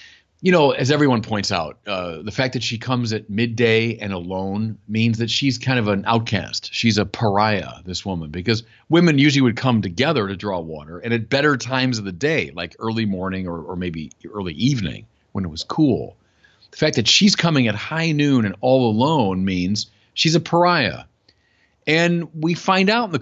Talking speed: 200 wpm